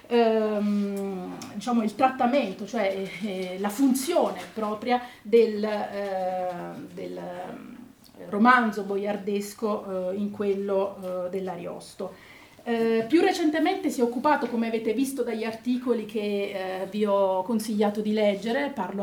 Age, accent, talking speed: 40-59, native, 125 wpm